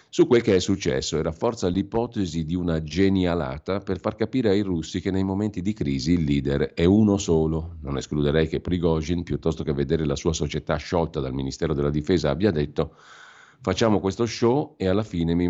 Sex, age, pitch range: male, 50-69, 75-95 Hz